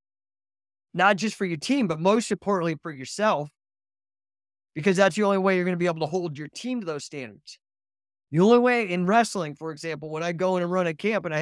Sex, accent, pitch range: male, American, 130-205 Hz